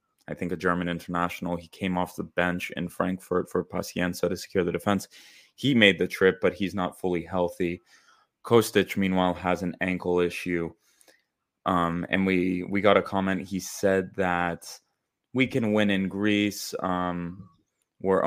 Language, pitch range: English, 90-100 Hz